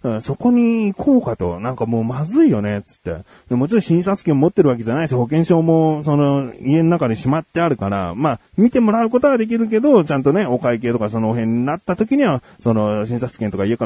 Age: 30-49